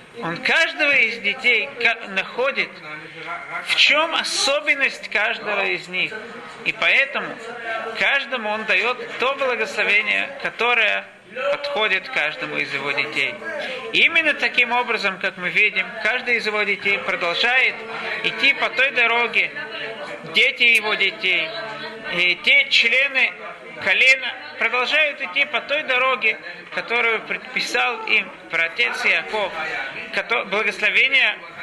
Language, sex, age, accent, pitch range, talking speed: Russian, male, 50-69, native, 190-255 Hz, 110 wpm